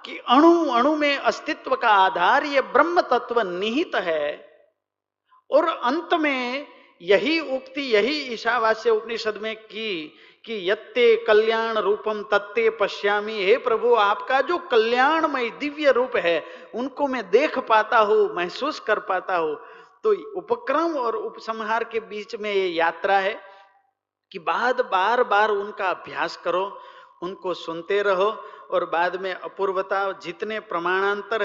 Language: Hindi